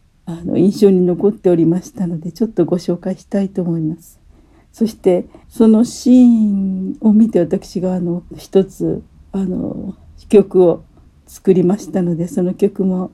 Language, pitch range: Japanese, 170-205 Hz